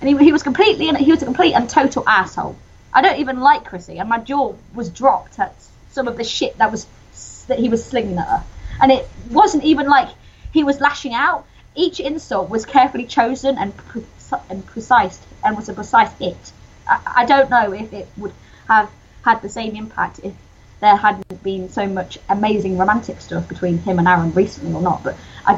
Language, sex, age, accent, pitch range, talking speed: English, female, 20-39, British, 205-305 Hz, 205 wpm